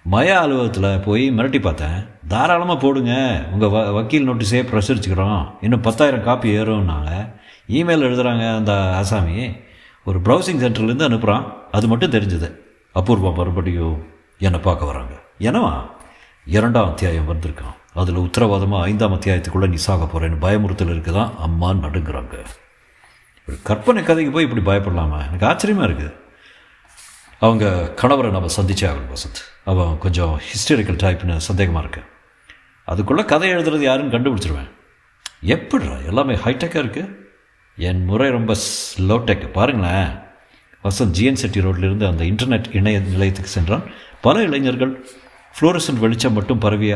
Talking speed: 115 wpm